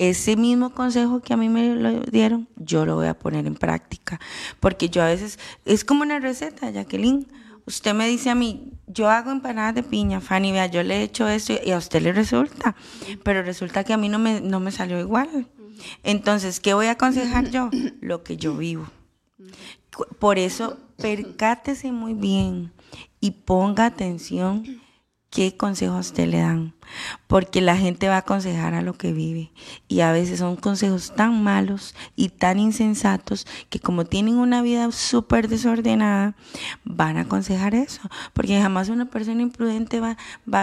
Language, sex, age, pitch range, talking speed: Spanish, female, 30-49, 185-235 Hz, 175 wpm